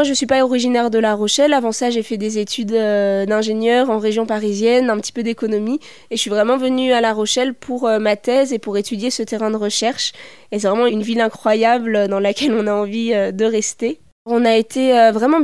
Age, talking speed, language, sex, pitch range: 20-39, 225 wpm, French, female, 215-245 Hz